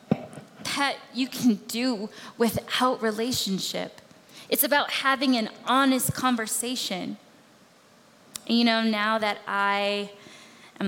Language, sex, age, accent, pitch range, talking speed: English, female, 10-29, American, 195-235 Hz, 105 wpm